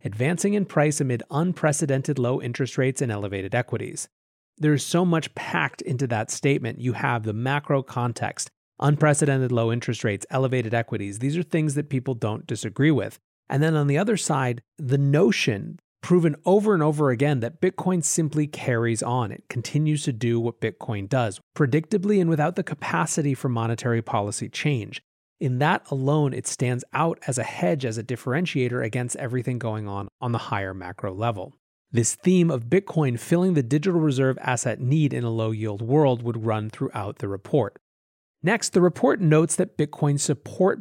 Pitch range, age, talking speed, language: 120-155 Hz, 30-49, 175 wpm, English